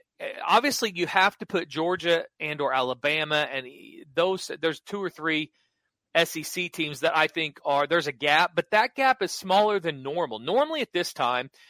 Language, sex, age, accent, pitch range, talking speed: English, male, 40-59, American, 140-190 Hz, 180 wpm